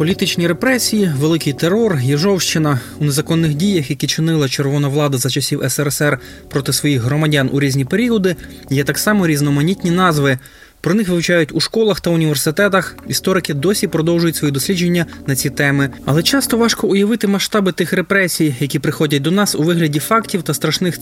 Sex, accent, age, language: male, native, 20-39, Ukrainian